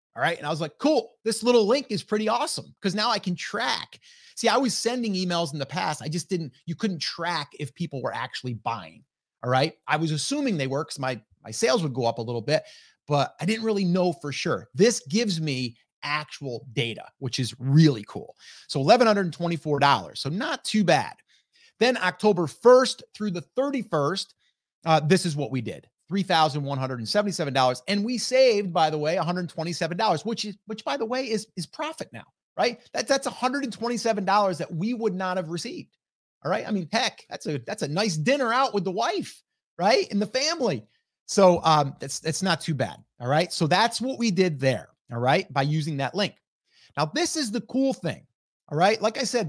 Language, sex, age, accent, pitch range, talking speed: English, male, 30-49, American, 150-225 Hz, 220 wpm